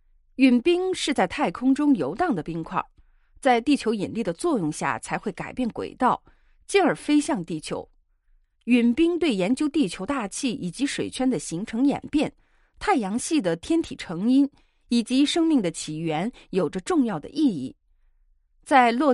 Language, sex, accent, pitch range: Chinese, female, native, 175-275 Hz